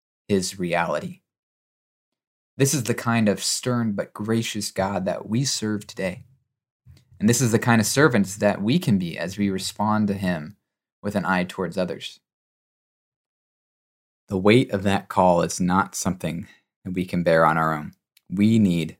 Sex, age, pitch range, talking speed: male, 20-39, 90-110 Hz, 165 wpm